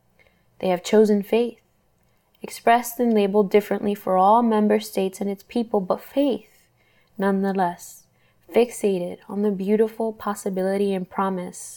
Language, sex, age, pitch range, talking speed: English, female, 10-29, 195-225 Hz, 125 wpm